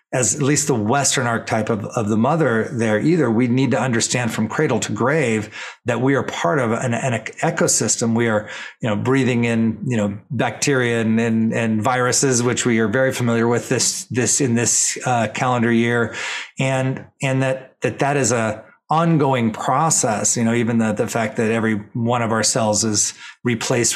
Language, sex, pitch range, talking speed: English, male, 110-130 Hz, 195 wpm